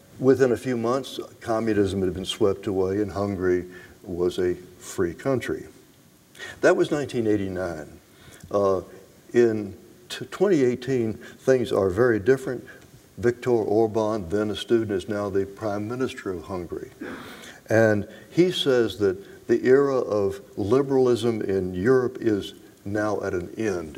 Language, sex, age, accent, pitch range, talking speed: English, male, 60-79, American, 95-120 Hz, 130 wpm